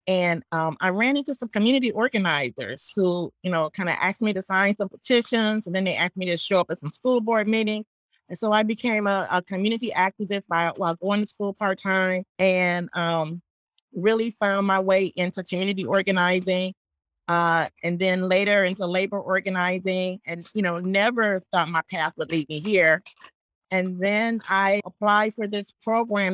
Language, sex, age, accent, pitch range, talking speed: English, female, 30-49, American, 165-200 Hz, 180 wpm